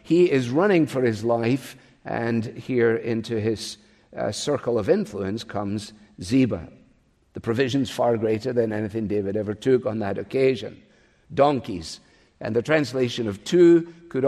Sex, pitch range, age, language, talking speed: male, 115-150 Hz, 50-69, English, 145 wpm